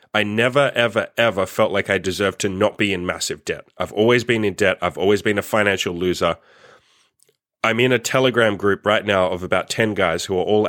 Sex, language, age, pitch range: male, English, 30-49, 100-125 Hz